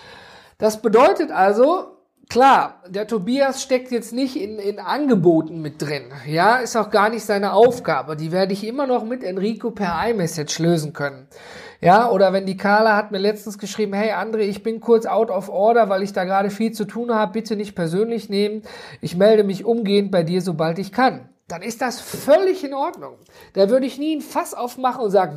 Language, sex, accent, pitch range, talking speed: German, male, German, 180-250 Hz, 200 wpm